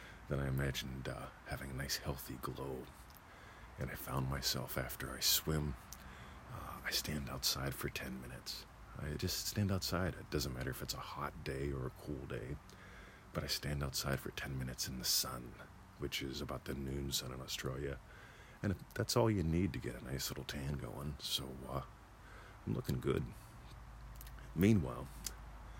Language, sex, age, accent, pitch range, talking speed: English, male, 40-59, American, 65-85 Hz, 170 wpm